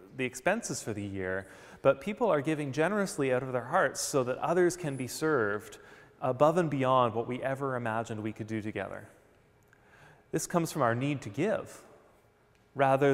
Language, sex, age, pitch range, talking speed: English, male, 30-49, 115-155 Hz, 180 wpm